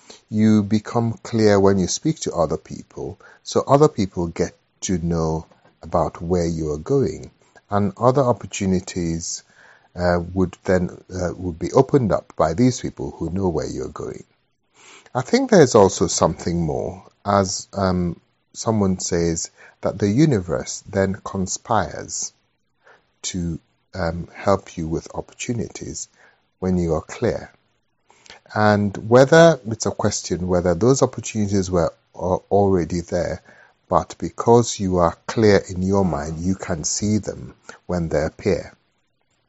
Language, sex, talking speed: English, male, 135 wpm